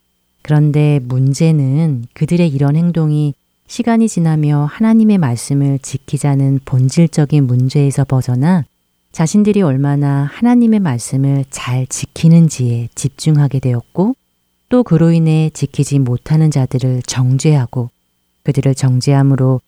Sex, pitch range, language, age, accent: female, 125-155 Hz, Korean, 30-49, native